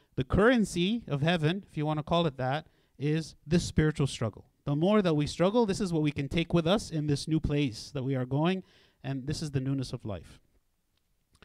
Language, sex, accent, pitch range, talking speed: English, male, American, 130-170 Hz, 225 wpm